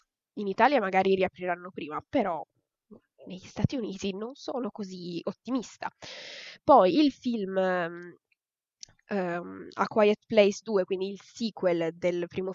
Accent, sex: native, female